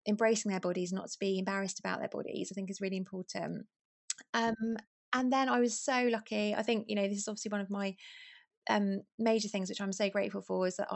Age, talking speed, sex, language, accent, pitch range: 20-39, 230 wpm, female, English, British, 185-215 Hz